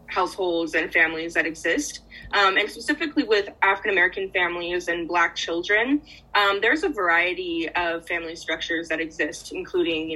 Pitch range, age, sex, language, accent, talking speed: 170-210 Hz, 20-39, female, English, American, 150 wpm